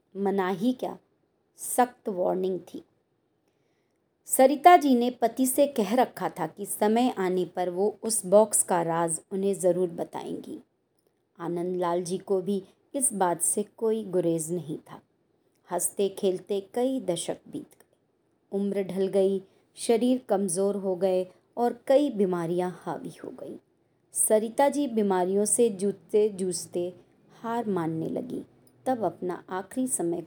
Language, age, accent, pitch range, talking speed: Hindi, 30-49, native, 180-220 Hz, 135 wpm